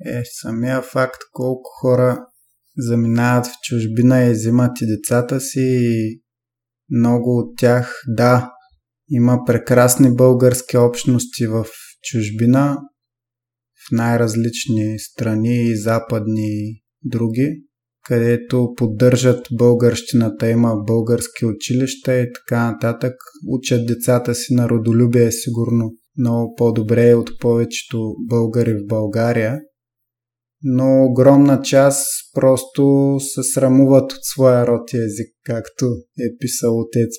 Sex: male